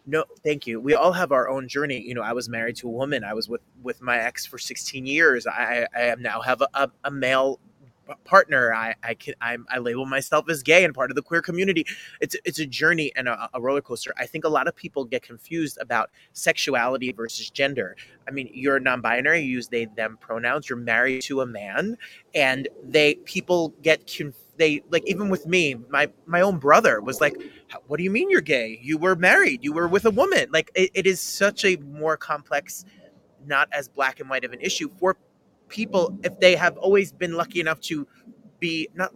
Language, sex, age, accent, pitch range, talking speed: English, male, 20-39, American, 130-185 Hz, 215 wpm